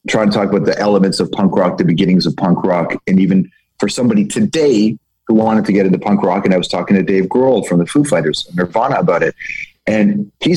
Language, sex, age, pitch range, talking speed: English, male, 30-49, 95-145 Hz, 240 wpm